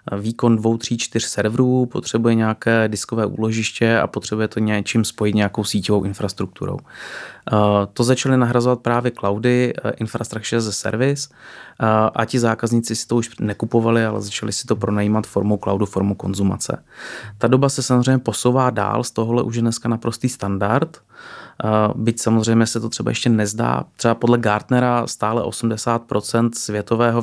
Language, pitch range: Czech, 105-115 Hz